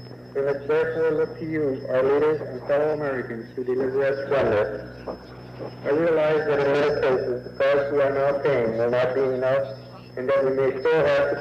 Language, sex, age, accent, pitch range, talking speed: Italian, male, 50-69, American, 120-145 Hz, 210 wpm